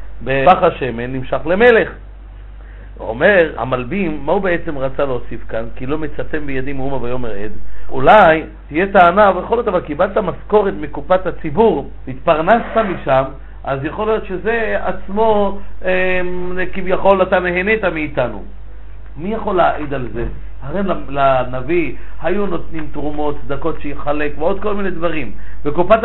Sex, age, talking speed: male, 50-69, 130 wpm